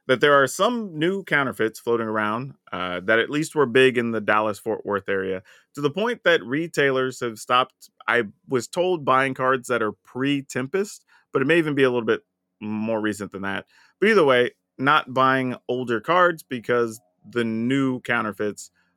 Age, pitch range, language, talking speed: 30-49, 105-145 Hz, English, 180 wpm